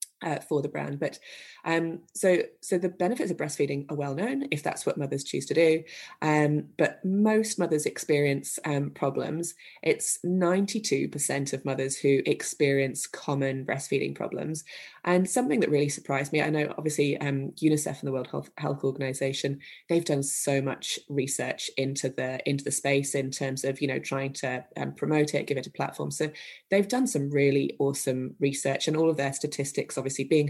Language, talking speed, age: English, 185 wpm, 20-39